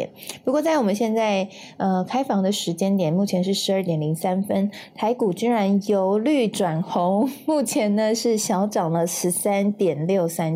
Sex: female